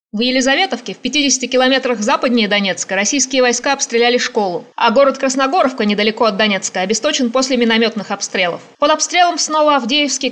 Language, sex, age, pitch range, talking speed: Russian, female, 20-39, 220-275 Hz, 145 wpm